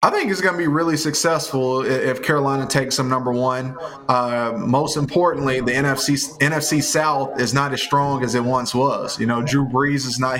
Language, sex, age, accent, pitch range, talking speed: English, male, 20-39, American, 125-140 Hz, 200 wpm